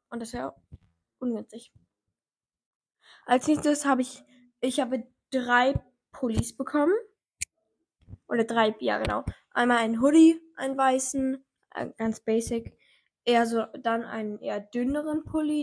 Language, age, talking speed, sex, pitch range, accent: German, 10-29, 125 wpm, female, 220-270 Hz, German